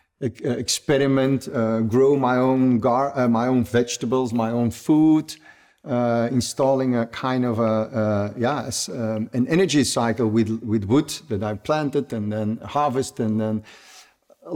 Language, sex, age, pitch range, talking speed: Dutch, male, 50-69, 115-140 Hz, 155 wpm